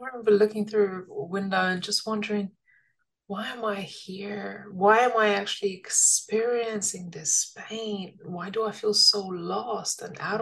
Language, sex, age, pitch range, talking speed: English, female, 20-39, 195-235 Hz, 160 wpm